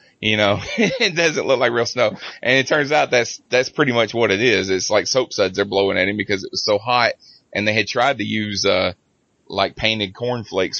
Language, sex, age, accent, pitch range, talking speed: English, male, 20-39, American, 95-115 Hz, 235 wpm